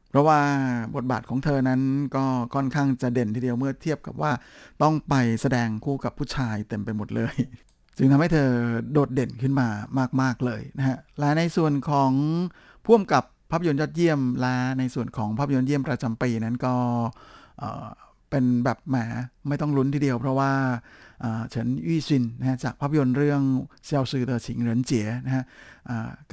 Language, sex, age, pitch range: Thai, male, 60-79, 120-140 Hz